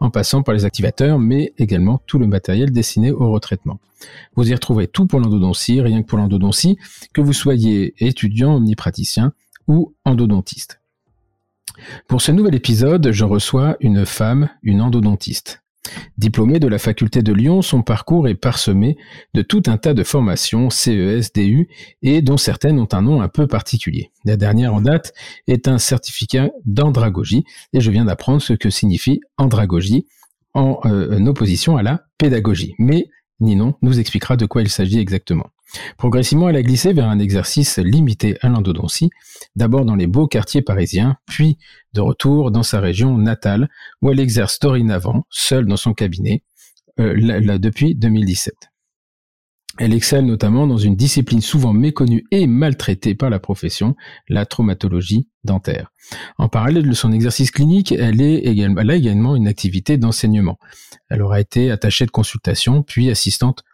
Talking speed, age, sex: 165 wpm, 40-59, male